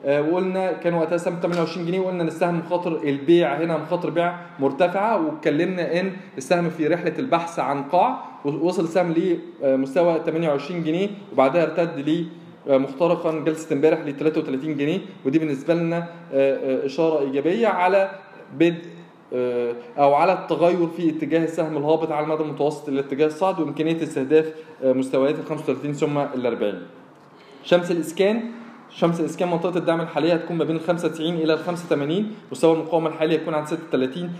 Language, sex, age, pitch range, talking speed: Arabic, male, 20-39, 150-175 Hz, 145 wpm